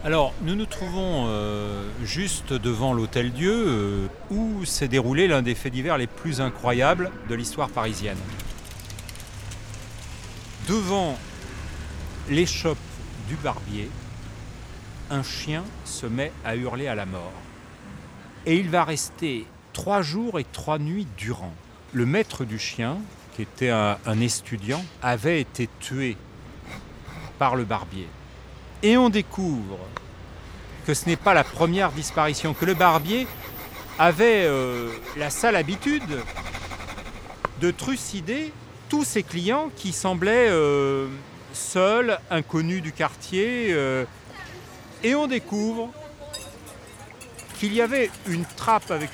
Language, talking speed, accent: French, 120 wpm, French